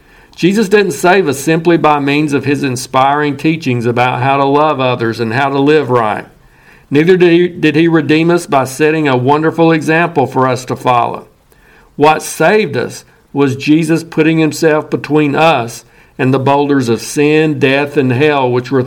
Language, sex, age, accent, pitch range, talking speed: English, male, 50-69, American, 130-155 Hz, 175 wpm